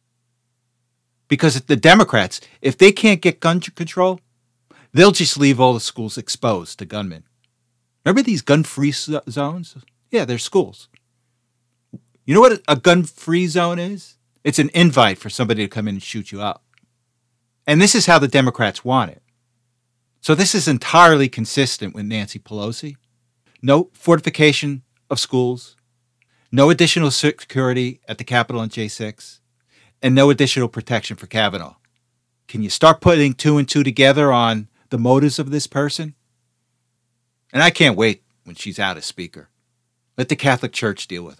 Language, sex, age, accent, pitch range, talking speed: English, male, 40-59, American, 120-150 Hz, 155 wpm